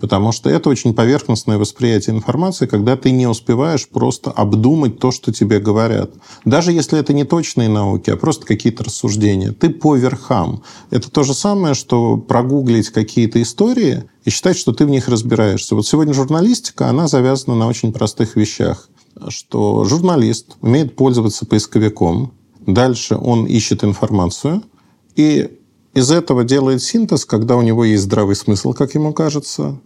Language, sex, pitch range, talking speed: Russian, male, 110-135 Hz, 155 wpm